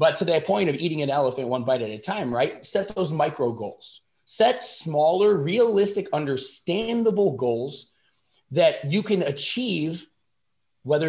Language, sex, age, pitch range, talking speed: English, male, 20-39, 120-165 Hz, 150 wpm